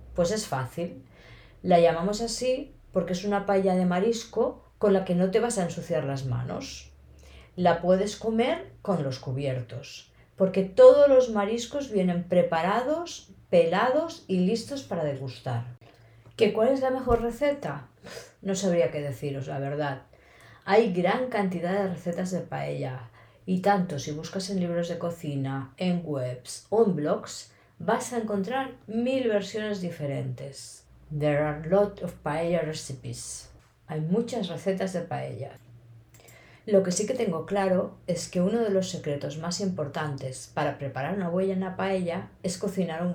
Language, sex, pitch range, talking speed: Spanish, female, 140-200 Hz, 155 wpm